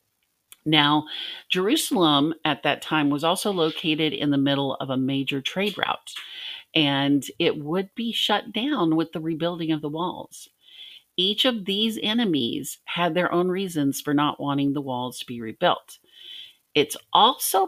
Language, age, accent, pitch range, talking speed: English, 50-69, American, 150-195 Hz, 155 wpm